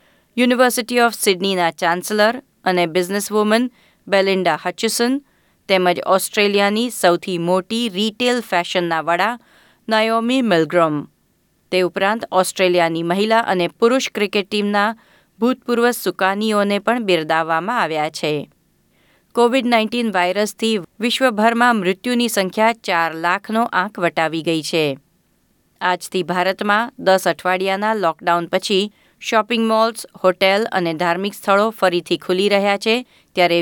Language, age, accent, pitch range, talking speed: Gujarati, 30-49, native, 175-225 Hz, 105 wpm